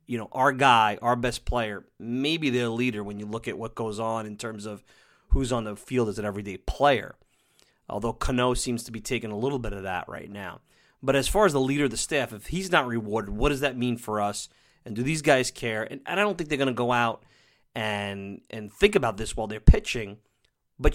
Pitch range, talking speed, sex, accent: 110-155 Hz, 245 wpm, male, American